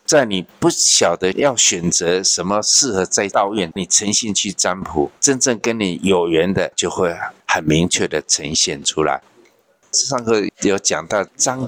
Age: 60-79